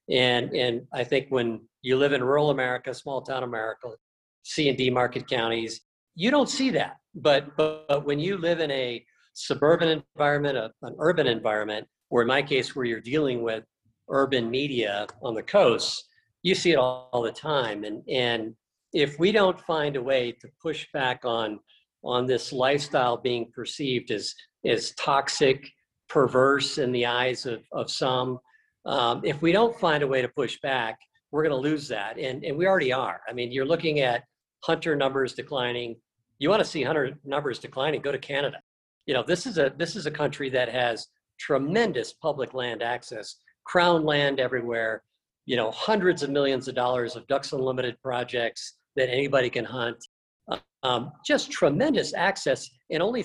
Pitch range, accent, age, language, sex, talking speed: 120-150 Hz, American, 50-69, English, male, 180 wpm